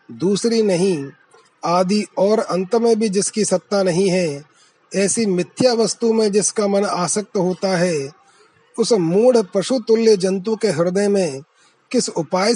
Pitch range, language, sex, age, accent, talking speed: 175-210 Hz, Hindi, male, 30-49, native, 145 wpm